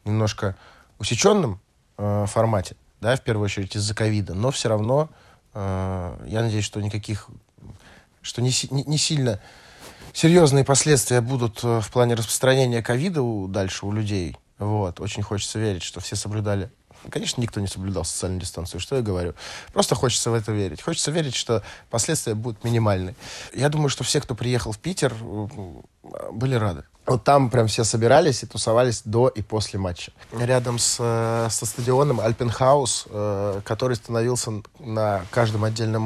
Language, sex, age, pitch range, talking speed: Russian, male, 20-39, 105-125 Hz, 150 wpm